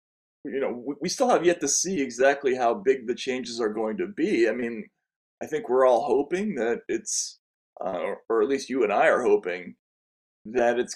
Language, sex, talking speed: English, male, 205 wpm